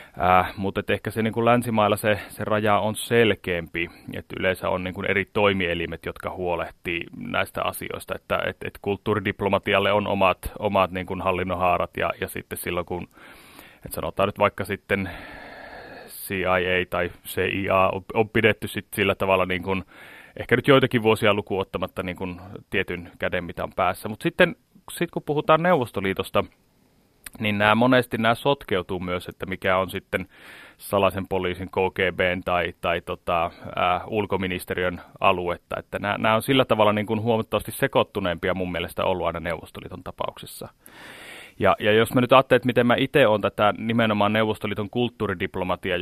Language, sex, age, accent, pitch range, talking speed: Finnish, male, 30-49, native, 90-110 Hz, 155 wpm